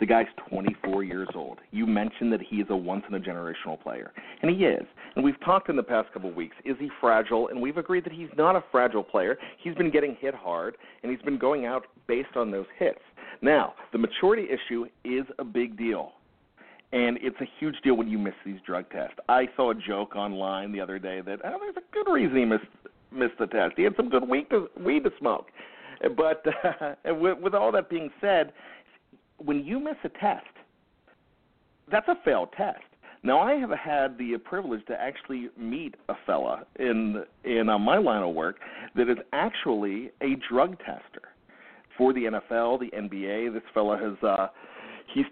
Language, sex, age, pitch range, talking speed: English, male, 40-59, 105-150 Hz, 195 wpm